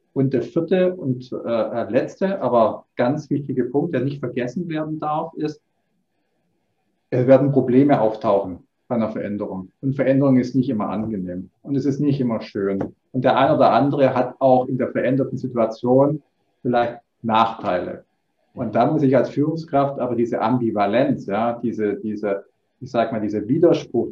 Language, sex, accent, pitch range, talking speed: English, male, German, 115-145 Hz, 160 wpm